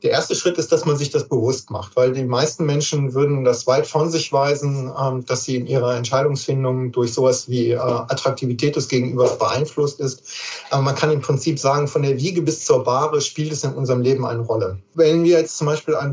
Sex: male